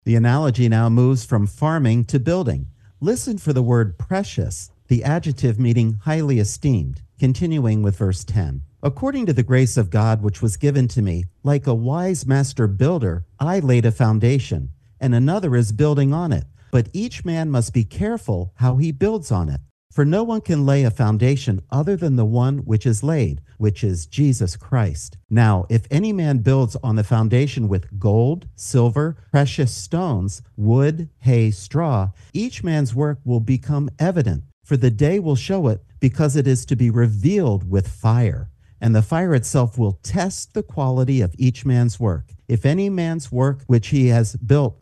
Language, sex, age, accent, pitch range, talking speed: English, male, 50-69, American, 110-145 Hz, 180 wpm